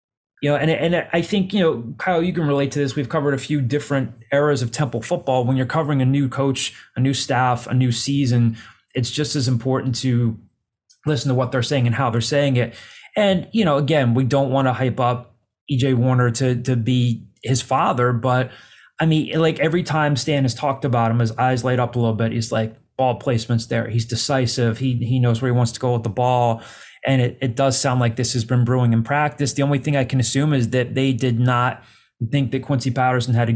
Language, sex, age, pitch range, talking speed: English, male, 20-39, 120-140 Hz, 235 wpm